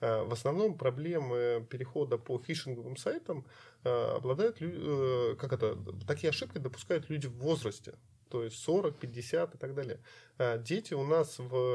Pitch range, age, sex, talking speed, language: 120-150 Hz, 20-39, male, 140 wpm, Russian